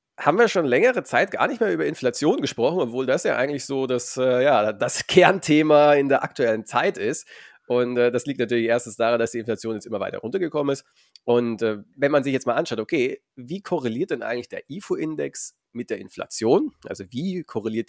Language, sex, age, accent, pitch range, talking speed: German, male, 30-49, German, 115-140 Hz, 205 wpm